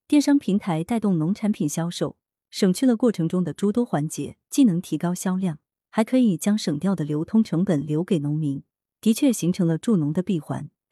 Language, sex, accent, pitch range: Chinese, female, native, 160-220 Hz